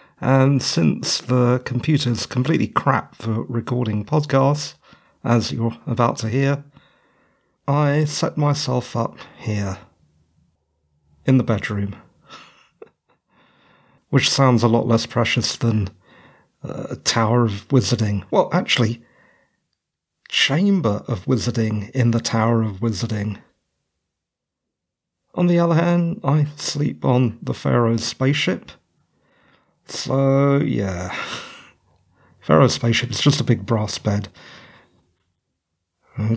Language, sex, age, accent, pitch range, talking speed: English, male, 50-69, British, 115-165 Hz, 105 wpm